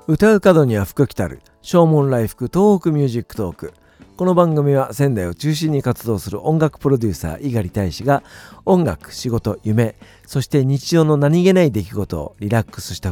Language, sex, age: Japanese, male, 50-69